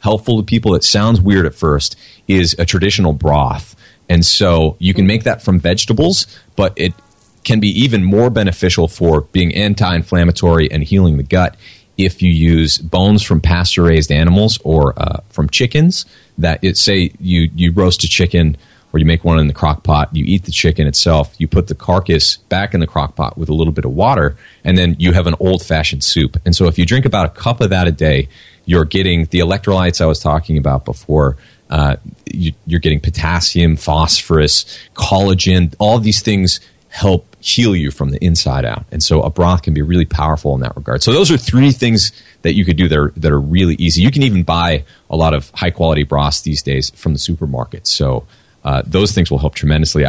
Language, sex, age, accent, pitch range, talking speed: English, male, 30-49, American, 80-95 Hz, 205 wpm